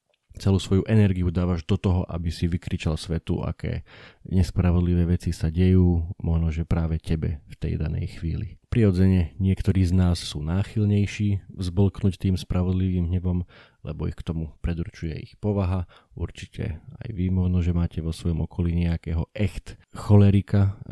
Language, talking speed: Slovak, 145 wpm